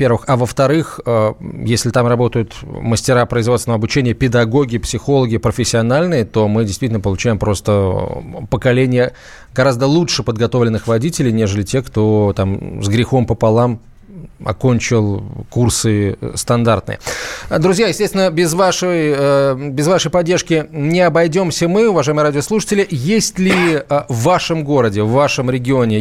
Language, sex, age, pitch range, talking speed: Russian, male, 20-39, 120-160 Hz, 120 wpm